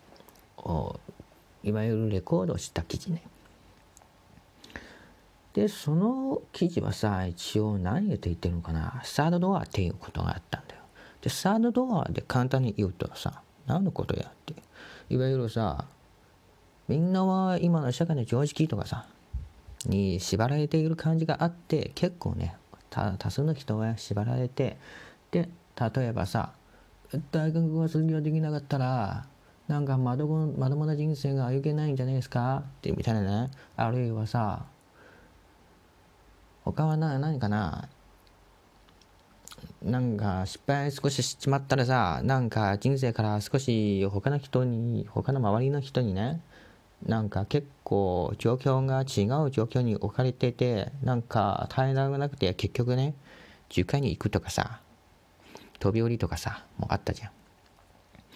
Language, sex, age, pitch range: English, male, 40-59, 100-145 Hz